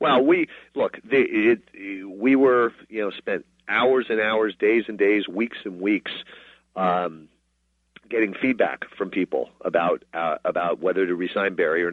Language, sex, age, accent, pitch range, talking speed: English, male, 40-59, American, 85-115 Hz, 165 wpm